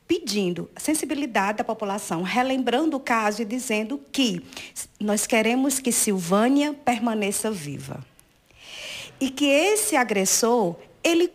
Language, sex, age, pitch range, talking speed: Portuguese, female, 50-69, 205-285 Hz, 115 wpm